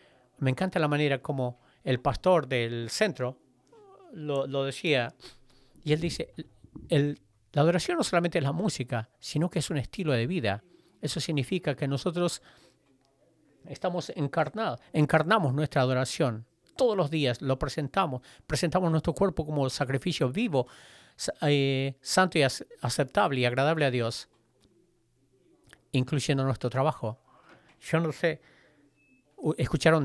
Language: English